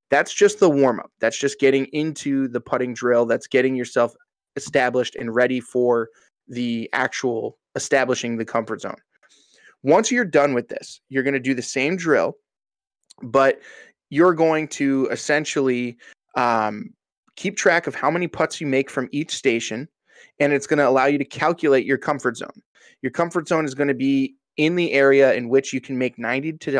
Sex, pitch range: male, 125-155 Hz